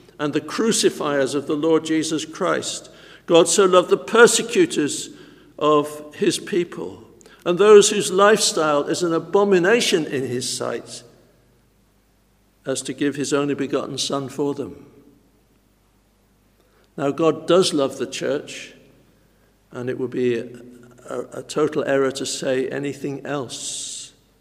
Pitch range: 130-170 Hz